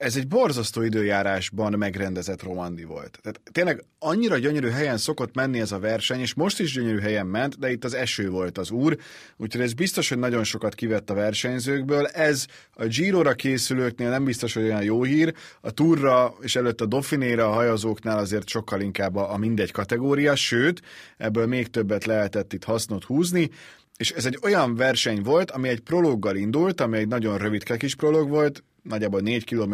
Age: 30-49